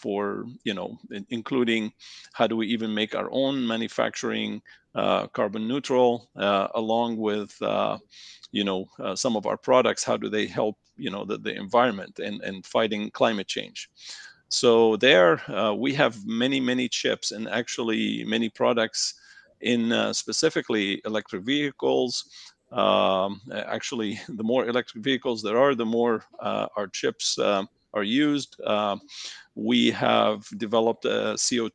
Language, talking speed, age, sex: English, 150 wpm, 40-59, male